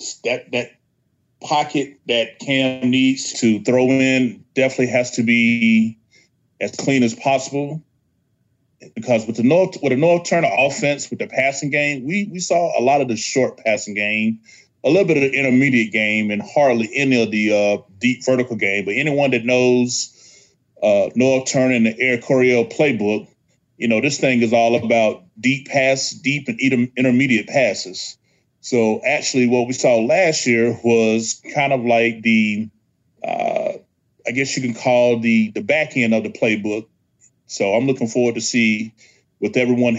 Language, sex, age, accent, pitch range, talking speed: English, male, 30-49, American, 115-135 Hz, 170 wpm